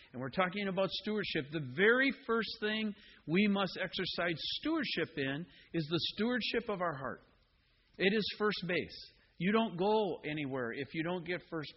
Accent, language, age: American, English, 50-69